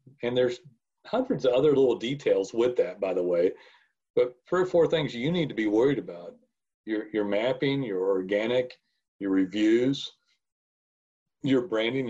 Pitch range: 105-145 Hz